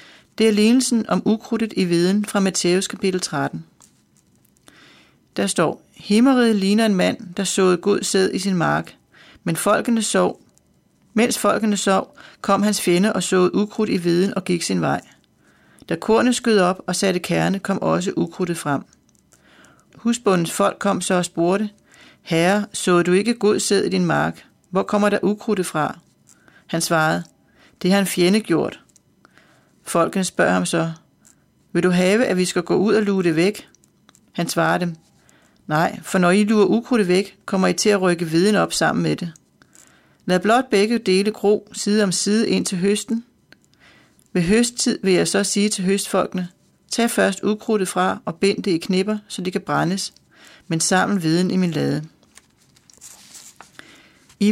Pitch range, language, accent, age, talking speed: 180-210 Hz, Danish, native, 30-49, 170 wpm